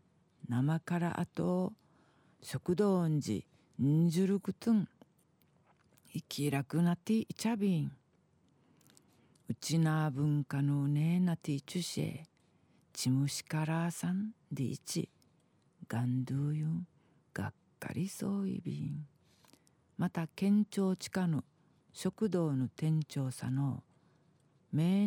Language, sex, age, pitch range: Japanese, female, 50-69, 145-190 Hz